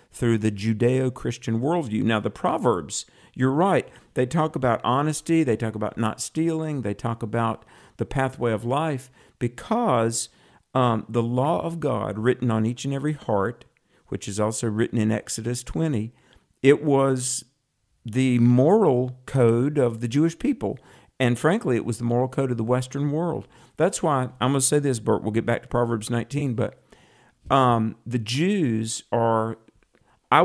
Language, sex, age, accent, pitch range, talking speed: English, male, 50-69, American, 115-135 Hz, 165 wpm